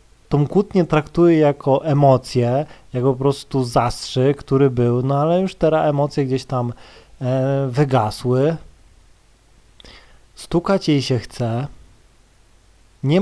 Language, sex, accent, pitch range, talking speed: Polish, male, native, 125-155 Hz, 110 wpm